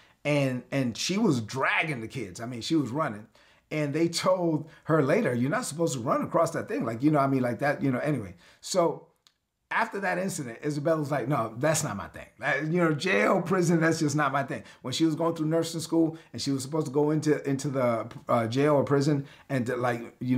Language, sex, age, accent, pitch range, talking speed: English, male, 40-59, American, 125-165 Hz, 240 wpm